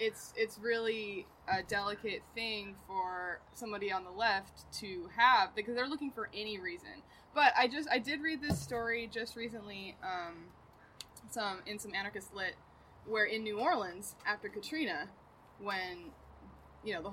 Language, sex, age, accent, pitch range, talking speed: English, female, 20-39, American, 195-235 Hz, 160 wpm